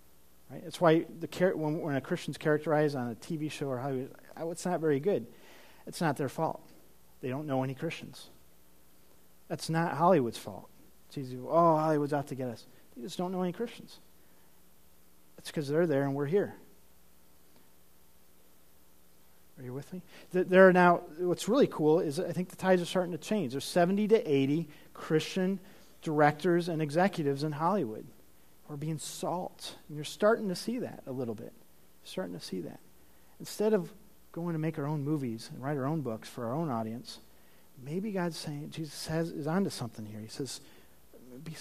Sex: male